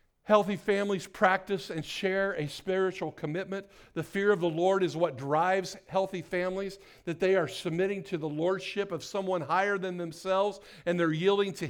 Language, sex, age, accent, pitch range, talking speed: English, male, 50-69, American, 160-200 Hz, 175 wpm